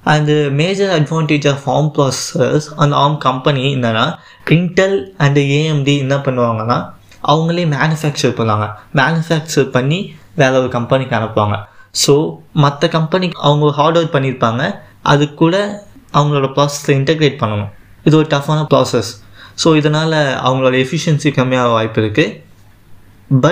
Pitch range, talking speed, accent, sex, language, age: 125-155 Hz, 120 wpm, native, male, Tamil, 20-39